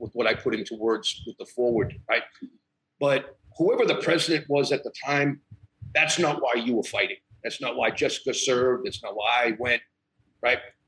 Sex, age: male, 50-69